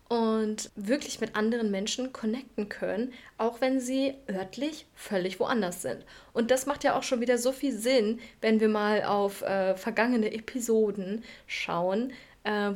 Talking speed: 155 wpm